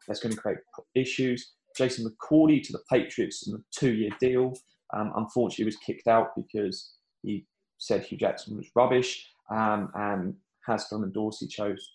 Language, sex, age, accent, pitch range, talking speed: English, male, 10-29, British, 105-125 Hz, 165 wpm